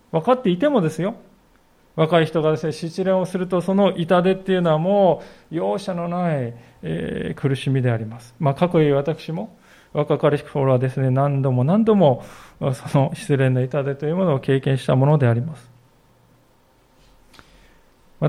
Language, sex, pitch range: Japanese, male, 150-220 Hz